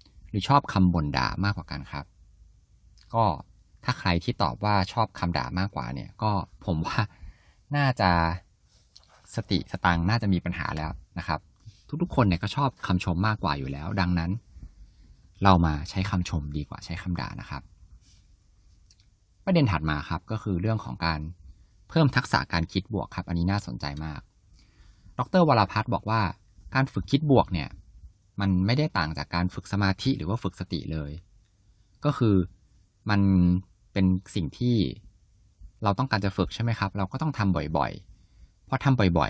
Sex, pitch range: male, 85-105 Hz